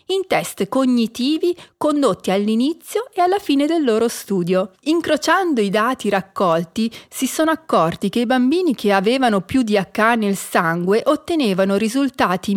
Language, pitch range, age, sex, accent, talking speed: Italian, 200-290 Hz, 40-59, female, native, 145 wpm